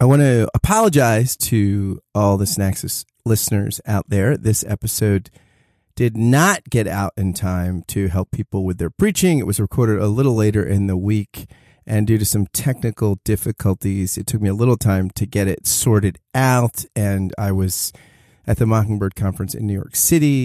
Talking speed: 180 wpm